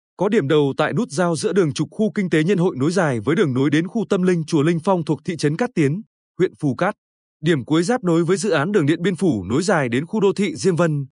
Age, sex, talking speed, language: 20-39, male, 285 wpm, Vietnamese